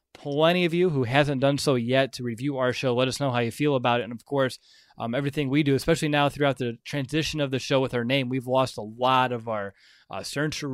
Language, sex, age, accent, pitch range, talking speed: English, male, 20-39, American, 120-145 Hz, 255 wpm